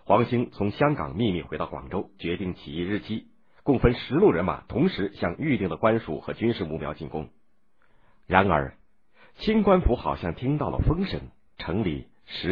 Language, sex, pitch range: Chinese, male, 85-110 Hz